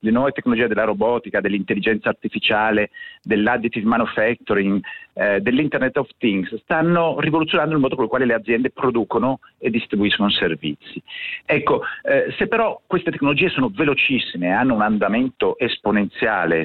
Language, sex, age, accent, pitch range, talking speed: Italian, male, 50-69, native, 120-185 Hz, 140 wpm